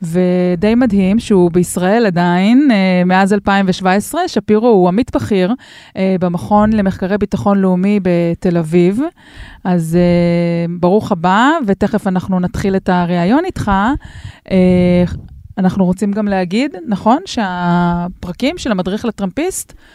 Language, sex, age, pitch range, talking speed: Hebrew, female, 20-39, 185-230 Hz, 115 wpm